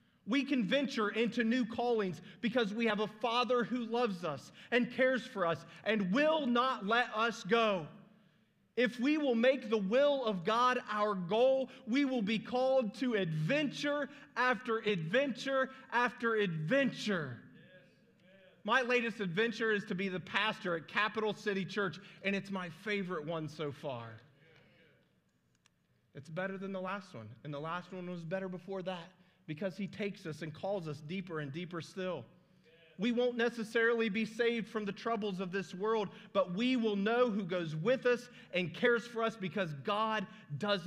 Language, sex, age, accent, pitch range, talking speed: English, male, 40-59, American, 180-230 Hz, 165 wpm